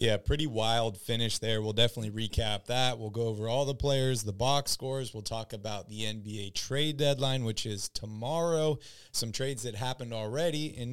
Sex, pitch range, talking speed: male, 115-145 Hz, 185 wpm